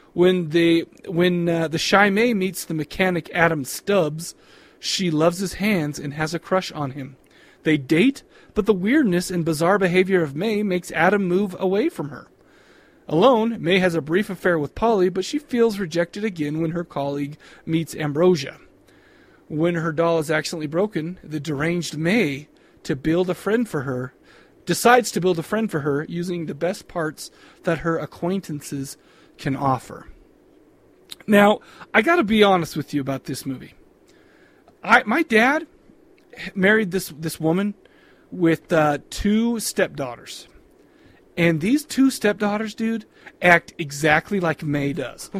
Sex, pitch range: male, 160-205 Hz